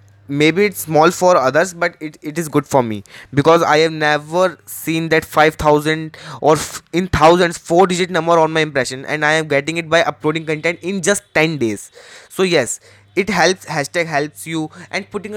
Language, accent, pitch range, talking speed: Hindi, native, 145-175 Hz, 200 wpm